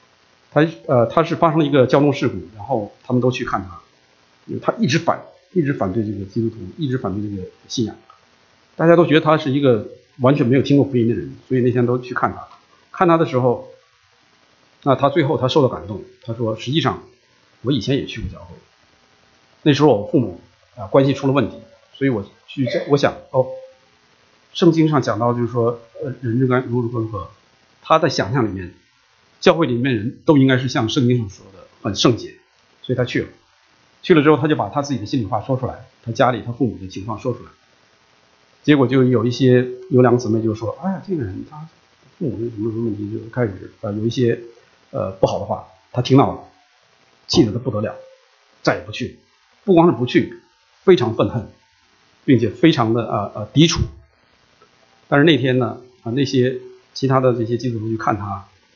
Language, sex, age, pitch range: English, male, 50-69, 95-135 Hz